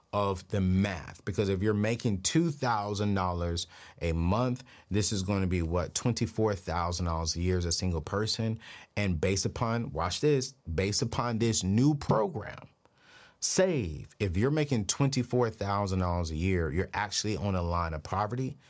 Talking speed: 150 wpm